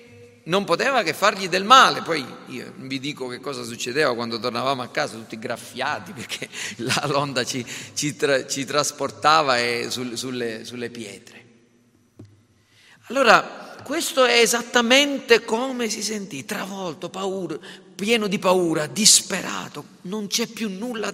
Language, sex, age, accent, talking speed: Italian, male, 40-59, native, 125 wpm